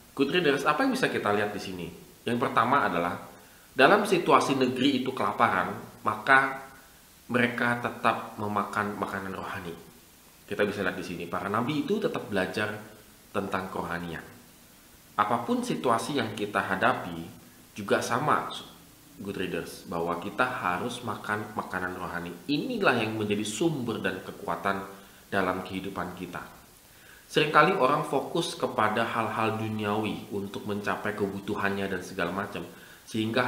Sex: male